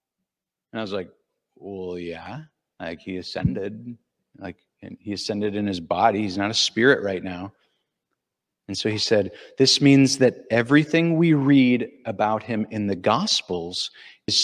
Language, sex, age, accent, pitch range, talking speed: English, male, 40-59, American, 120-195 Hz, 155 wpm